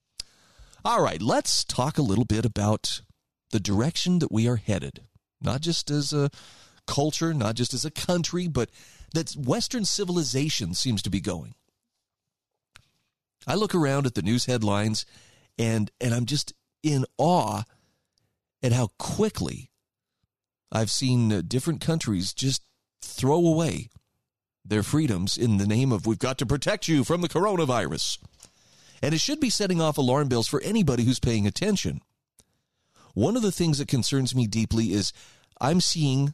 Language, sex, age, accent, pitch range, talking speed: English, male, 40-59, American, 105-150 Hz, 155 wpm